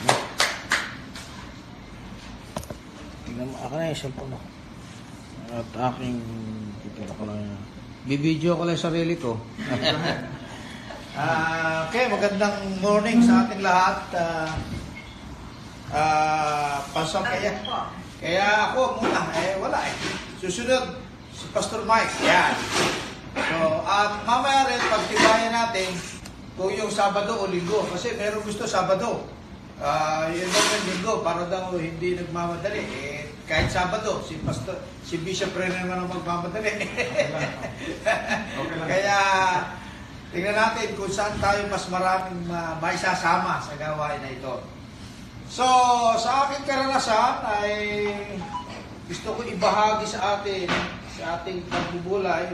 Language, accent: Filipino, native